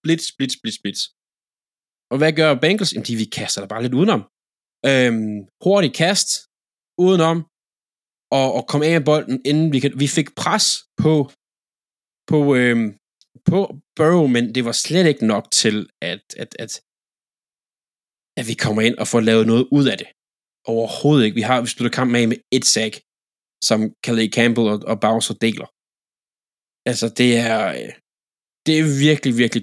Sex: male